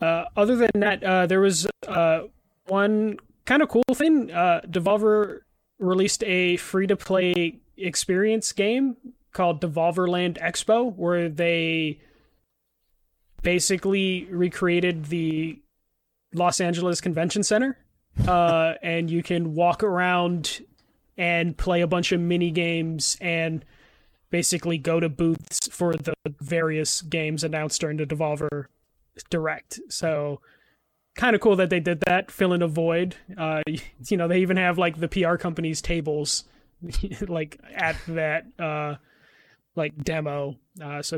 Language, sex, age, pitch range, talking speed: English, male, 20-39, 155-185 Hz, 130 wpm